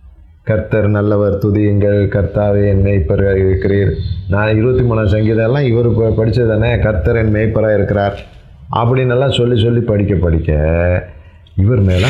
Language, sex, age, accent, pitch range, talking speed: Tamil, male, 30-49, native, 90-110 Hz, 130 wpm